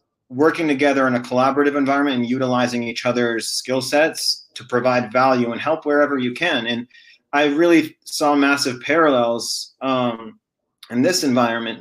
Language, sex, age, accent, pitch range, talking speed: English, male, 30-49, American, 120-145 Hz, 150 wpm